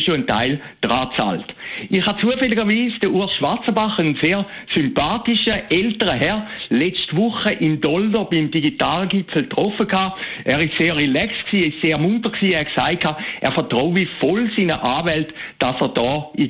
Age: 60-79